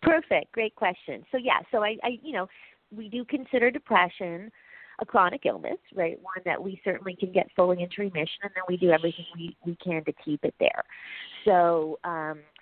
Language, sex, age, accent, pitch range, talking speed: English, female, 40-59, American, 135-180 Hz, 195 wpm